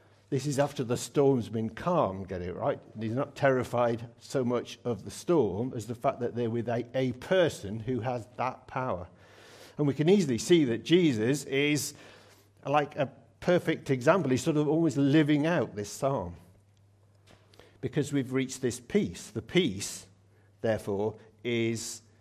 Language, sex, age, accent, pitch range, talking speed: English, male, 50-69, British, 105-140 Hz, 160 wpm